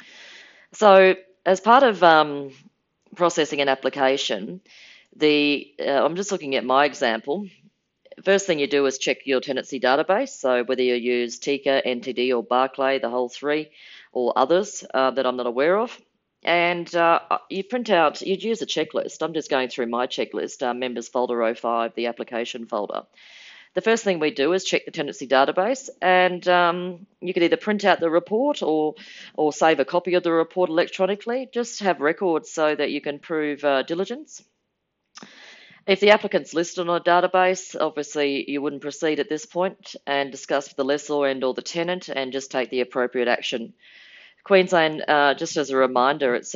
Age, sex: 40-59, female